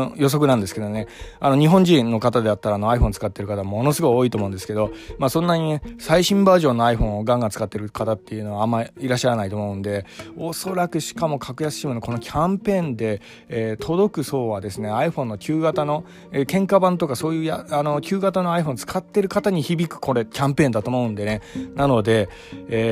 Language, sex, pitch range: Japanese, male, 110-150 Hz